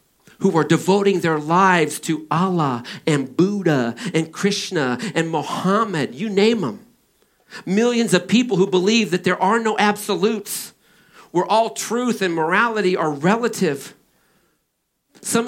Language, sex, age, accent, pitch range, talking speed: English, male, 50-69, American, 155-210 Hz, 130 wpm